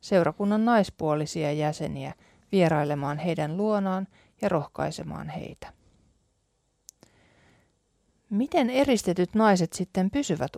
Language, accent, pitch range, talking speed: Finnish, native, 160-220 Hz, 80 wpm